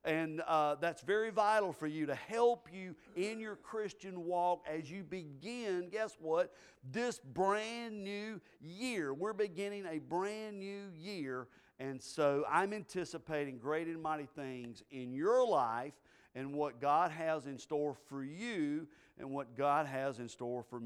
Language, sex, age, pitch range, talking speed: English, male, 50-69, 145-200 Hz, 160 wpm